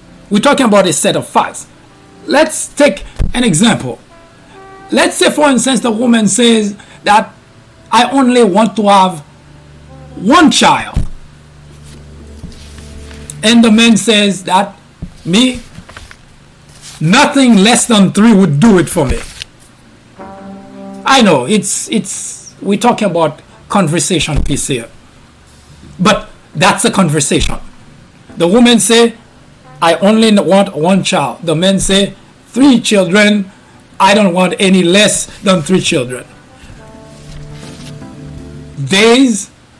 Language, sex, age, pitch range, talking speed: English, male, 60-79, 135-230 Hz, 115 wpm